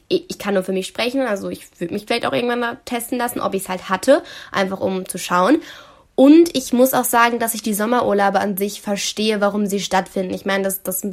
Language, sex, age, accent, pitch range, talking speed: German, female, 10-29, German, 195-255 Hz, 235 wpm